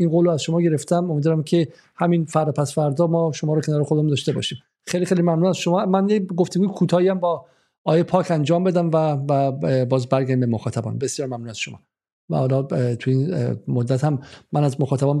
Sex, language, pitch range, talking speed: male, Persian, 135-165 Hz, 205 wpm